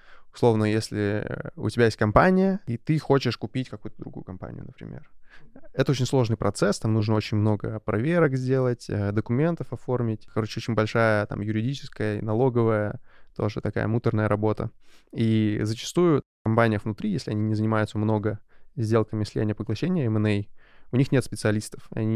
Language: Russian